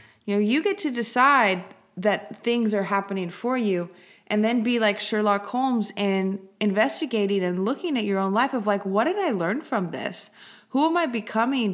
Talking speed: 195 wpm